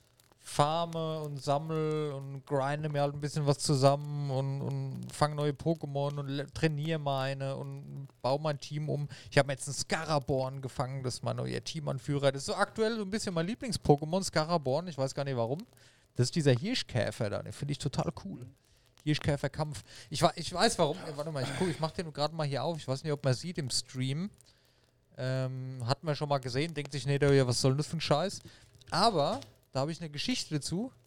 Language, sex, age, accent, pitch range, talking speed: German, male, 40-59, German, 130-165 Hz, 215 wpm